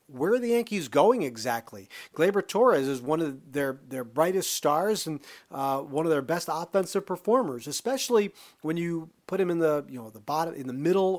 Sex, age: male, 40-59